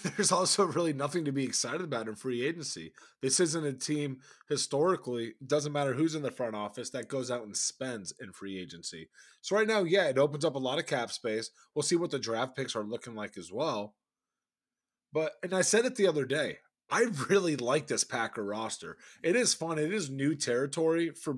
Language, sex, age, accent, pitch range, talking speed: English, male, 20-39, American, 130-165 Hz, 215 wpm